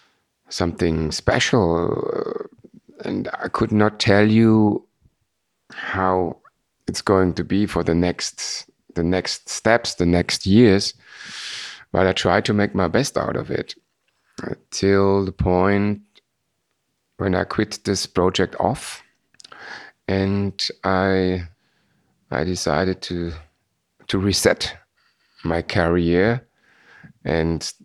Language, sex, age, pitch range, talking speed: English, male, 50-69, 85-100 Hz, 110 wpm